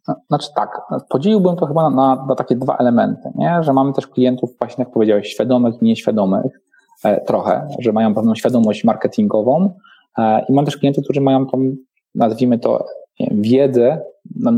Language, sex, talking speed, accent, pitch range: Polish, male, 175 wpm, native, 125-160 Hz